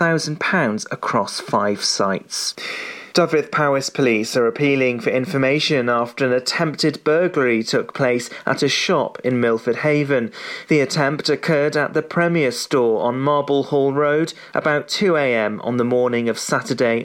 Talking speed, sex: 150 wpm, male